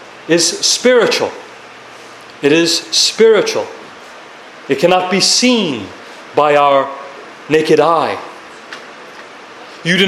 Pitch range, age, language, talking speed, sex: 165-225 Hz, 40-59, English, 90 wpm, male